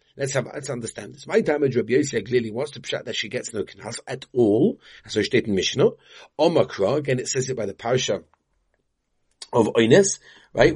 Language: English